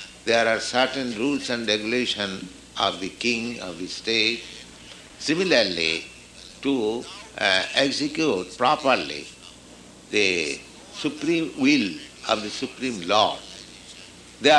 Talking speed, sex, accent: 105 wpm, male, Indian